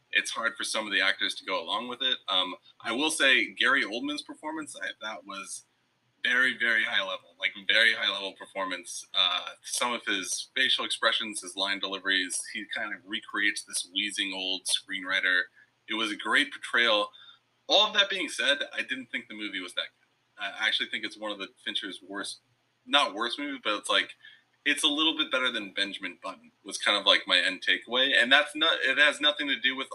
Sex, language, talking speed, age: male, English, 210 wpm, 30-49